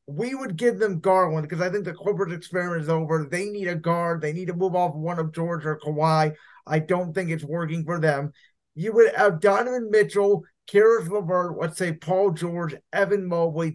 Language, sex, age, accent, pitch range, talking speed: English, male, 30-49, American, 165-205 Hz, 205 wpm